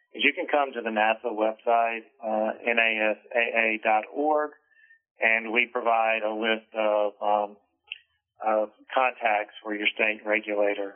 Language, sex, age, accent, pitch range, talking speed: English, male, 40-59, American, 105-115 Hz, 120 wpm